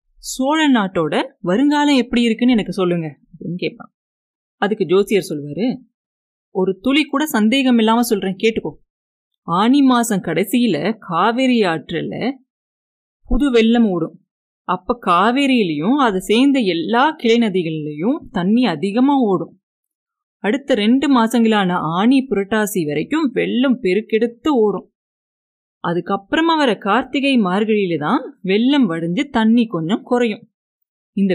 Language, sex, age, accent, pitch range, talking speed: Tamil, female, 30-49, native, 185-255 Hz, 100 wpm